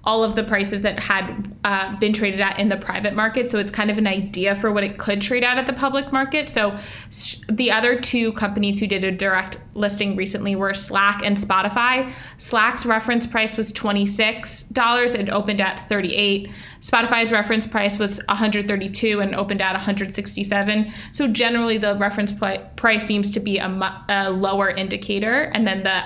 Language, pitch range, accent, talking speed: English, 200-230 Hz, American, 185 wpm